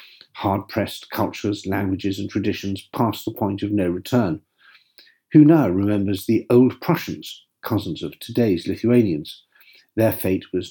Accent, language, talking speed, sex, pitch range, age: British, English, 135 wpm, male, 95-120 Hz, 50-69